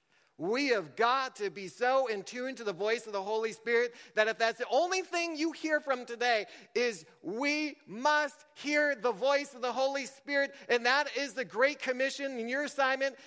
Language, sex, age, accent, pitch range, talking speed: English, male, 40-59, American, 215-285 Hz, 200 wpm